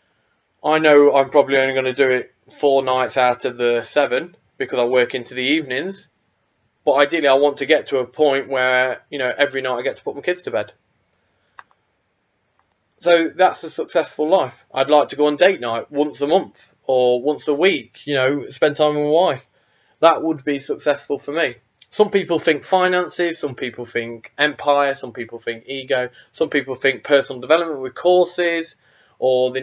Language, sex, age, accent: English, male, 20-39, British